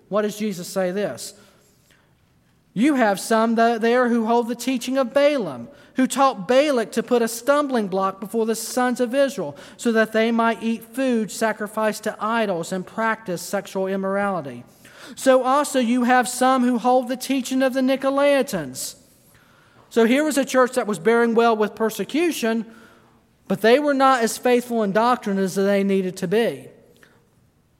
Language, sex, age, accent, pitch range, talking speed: English, male, 40-59, American, 200-245 Hz, 165 wpm